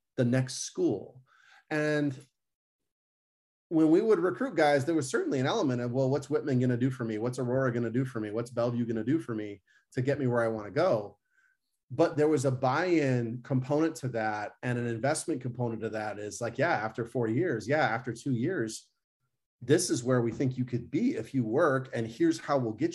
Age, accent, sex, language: 30-49, American, male, English